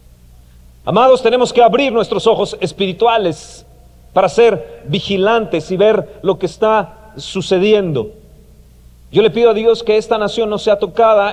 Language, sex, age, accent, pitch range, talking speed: Spanish, male, 40-59, Mexican, 170-215 Hz, 145 wpm